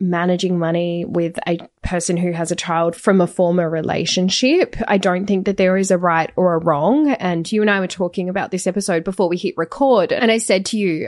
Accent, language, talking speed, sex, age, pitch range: Australian, English, 225 wpm, female, 10-29, 185-255 Hz